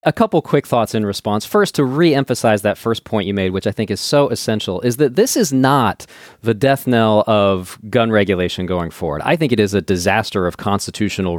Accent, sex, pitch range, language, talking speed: American, male, 105-165 Hz, English, 215 wpm